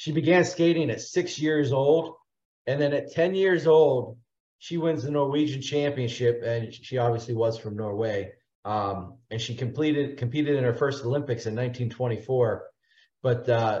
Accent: American